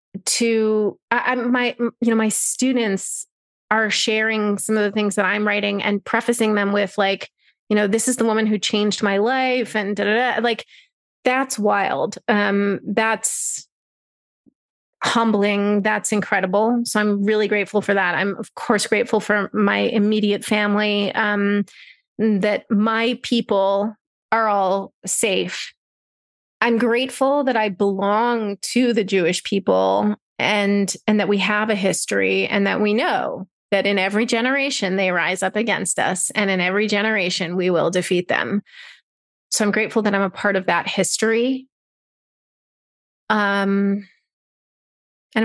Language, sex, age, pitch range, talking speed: English, female, 30-49, 200-225 Hz, 150 wpm